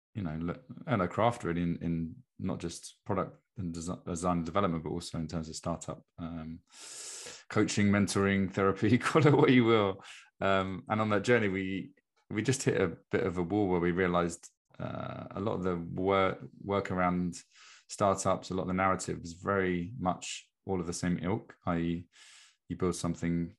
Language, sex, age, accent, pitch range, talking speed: English, male, 20-39, British, 85-95 Hz, 185 wpm